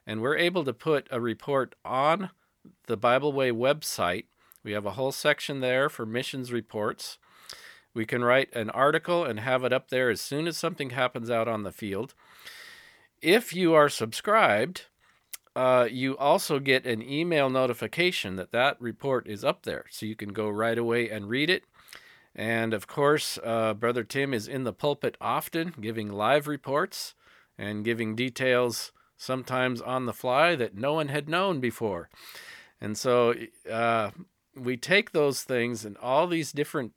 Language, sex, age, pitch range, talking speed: English, male, 40-59, 115-150 Hz, 170 wpm